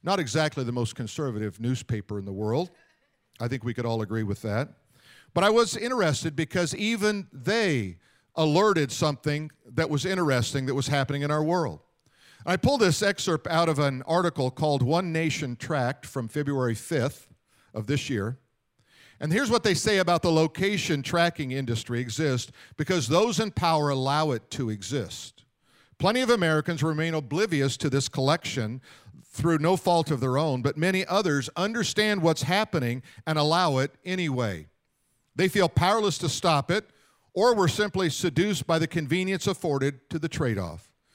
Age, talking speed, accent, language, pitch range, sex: 50-69, 165 wpm, American, English, 130-175 Hz, male